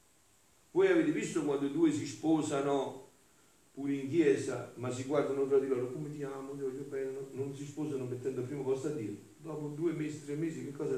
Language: Italian